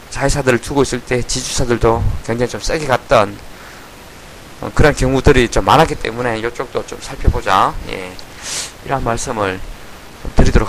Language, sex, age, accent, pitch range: Korean, male, 20-39, native, 115-150 Hz